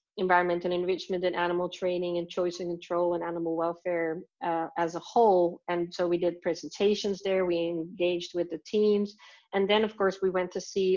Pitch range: 175-205 Hz